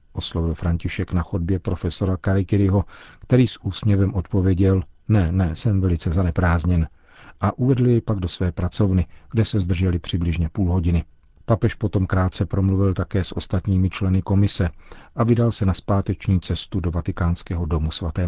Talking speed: 155 wpm